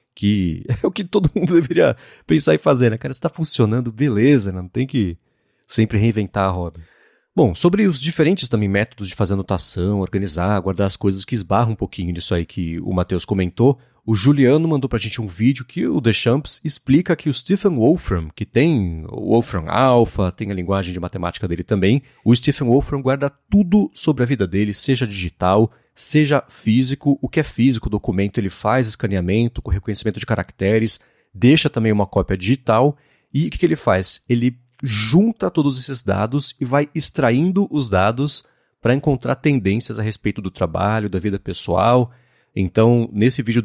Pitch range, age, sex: 100-140 Hz, 30-49, male